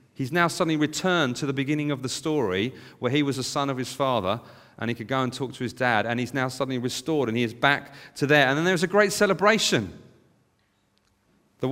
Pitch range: 120-150 Hz